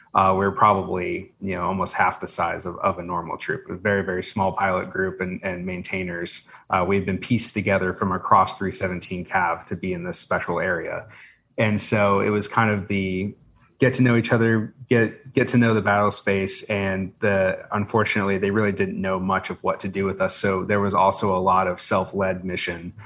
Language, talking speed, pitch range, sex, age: English, 215 wpm, 95-110 Hz, male, 30-49